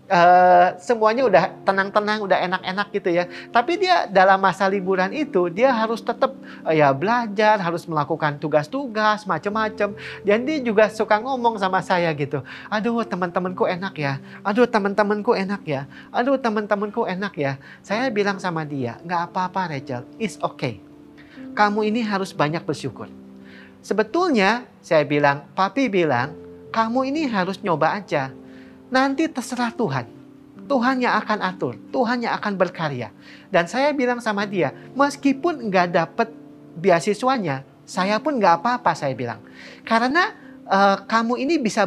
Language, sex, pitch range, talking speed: Indonesian, male, 160-230 Hz, 140 wpm